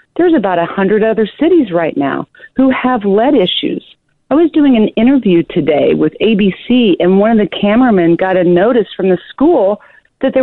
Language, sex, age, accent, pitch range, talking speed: English, female, 50-69, American, 180-260 Hz, 185 wpm